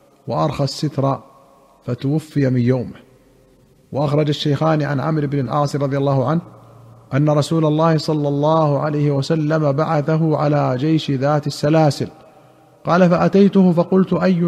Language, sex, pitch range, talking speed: Arabic, male, 140-160 Hz, 125 wpm